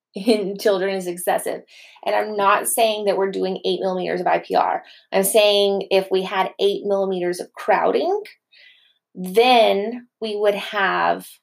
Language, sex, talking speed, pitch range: English, female, 145 wpm, 190-225 Hz